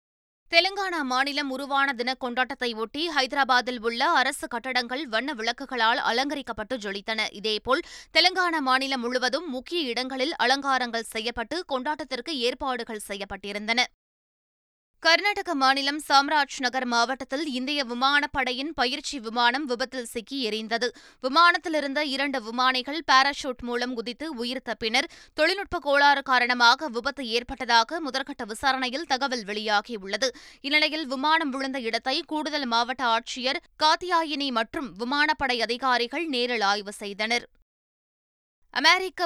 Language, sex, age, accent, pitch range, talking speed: Tamil, female, 20-39, native, 240-290 Hz, 105 wpm